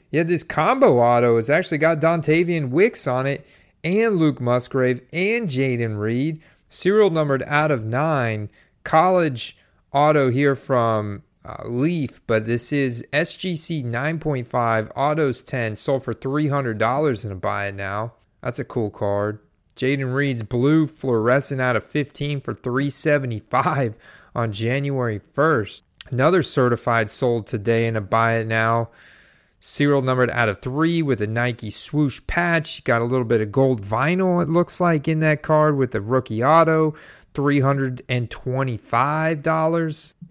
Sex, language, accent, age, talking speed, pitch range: male, English, American, 30-49, 145 wpm, 115-155 Hz